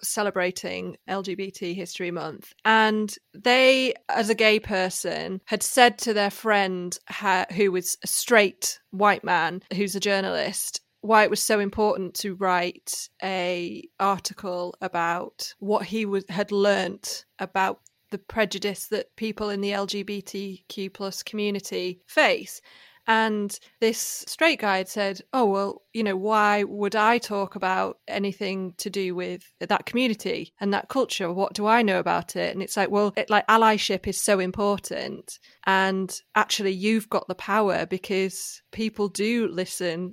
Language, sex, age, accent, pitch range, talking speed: English, female, 30-49, British, 185-210 Hz, 145 wpm